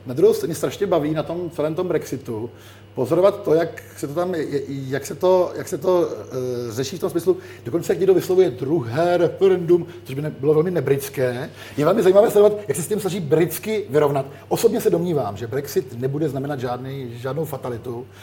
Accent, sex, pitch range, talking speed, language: native, male, 130-170 Hz, 210 wpm, Czech